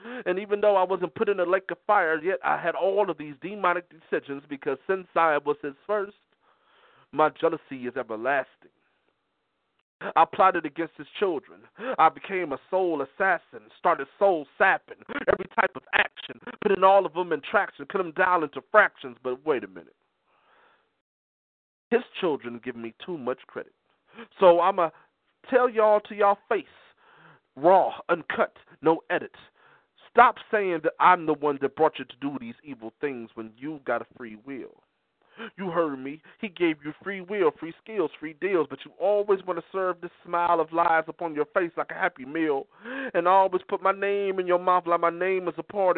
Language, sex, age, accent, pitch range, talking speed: English, male, 40-59, American, 150-205 Hz, 185 wpm